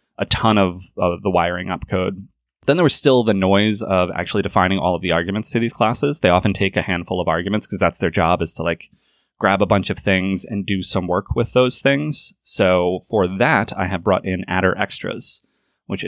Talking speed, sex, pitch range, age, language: 225 wpm, male, 90-110 Hz, 20-39, English